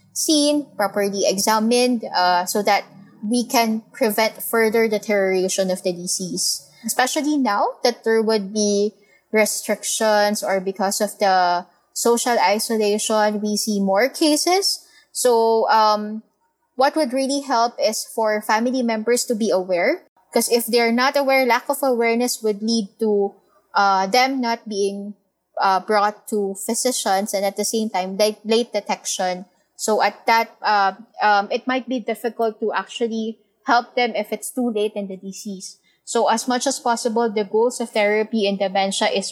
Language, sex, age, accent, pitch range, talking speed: English, female, 20-39, Filipino, 200-240 Hz, 155 wpm